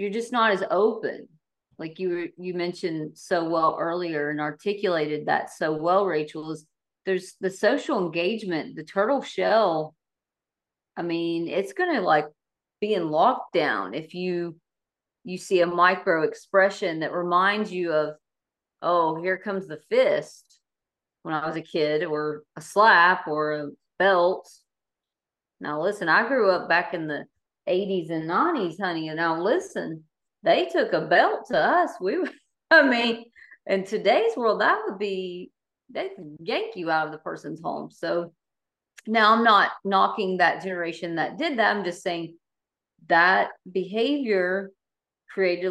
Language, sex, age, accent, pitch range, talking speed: English, female, 40-59, American, 160-200 Hz, 150 wpm